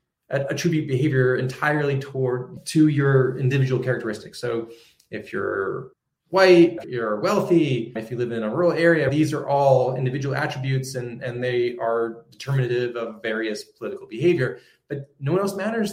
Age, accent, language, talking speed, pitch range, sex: 20-39, American, English, 150 wpm, 125-150 Hz, male